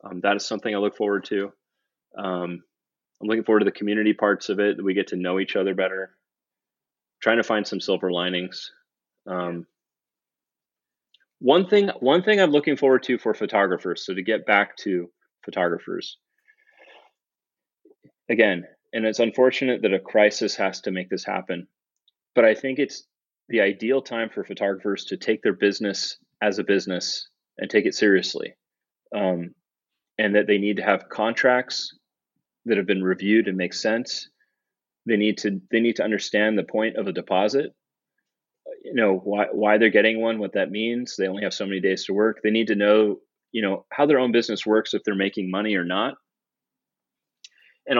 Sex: male